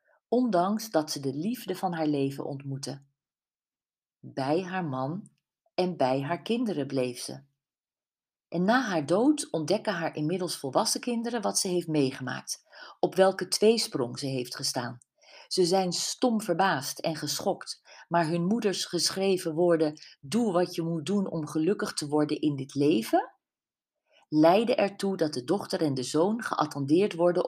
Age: 40-59